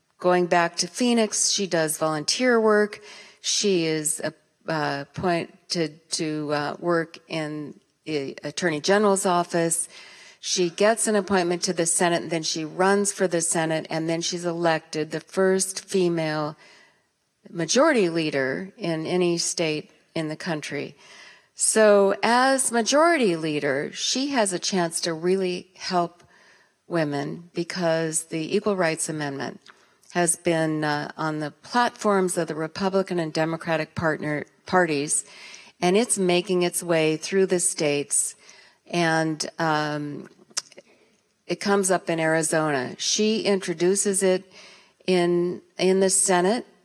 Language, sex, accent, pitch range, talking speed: English, female, American, 160-190 Hz, 125 wpm